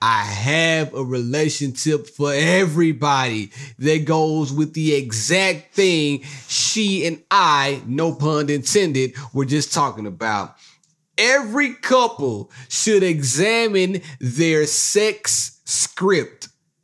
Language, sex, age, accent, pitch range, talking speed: English, male, 30-49, American, 135-190 Hz, 105 wpm